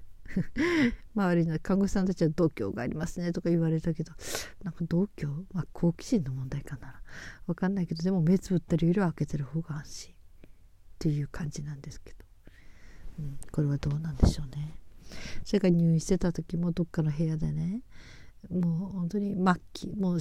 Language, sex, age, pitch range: Japanese, female, 40-59, 150-185 Hz